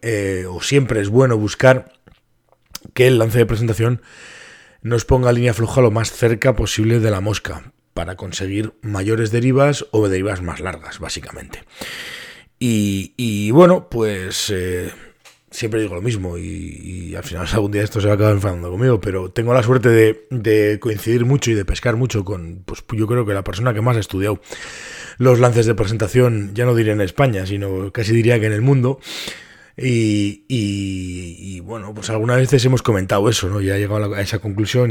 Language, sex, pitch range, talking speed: Spanish, male, 100-120 Hz, 190 wpm